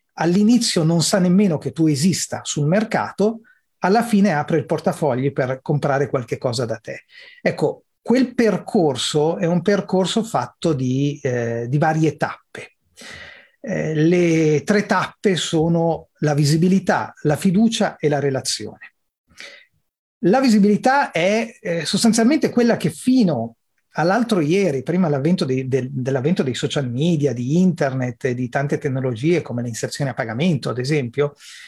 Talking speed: 135 wpm